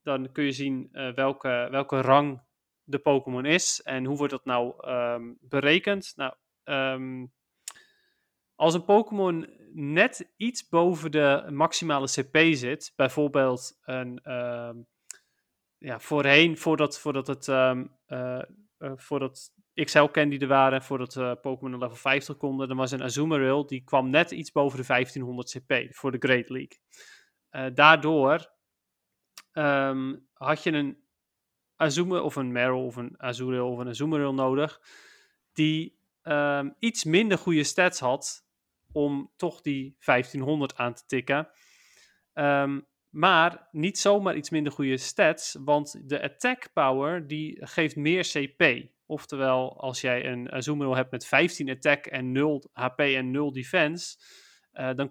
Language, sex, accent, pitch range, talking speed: Dutch, male, Dutch, 130-155 Hz, 145 wpm